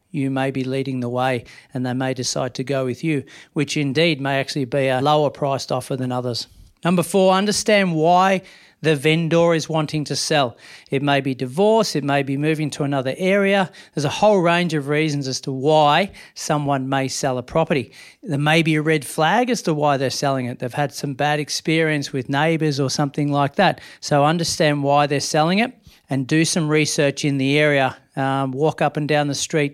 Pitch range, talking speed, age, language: 135-160 Hz, 210 wpm, 40-59, English